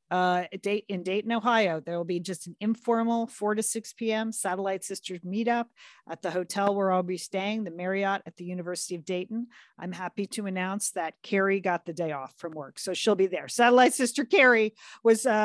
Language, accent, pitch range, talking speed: English, American, 175-220 Hz, 200 wpm